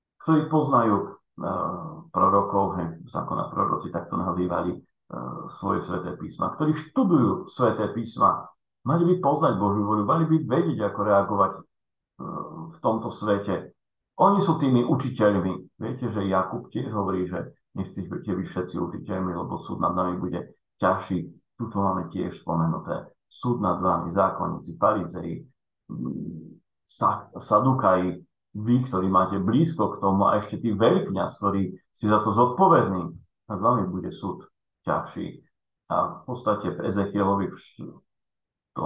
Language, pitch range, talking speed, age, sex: Slovak, 90-115 Hz, 135 wpm, 50-69, male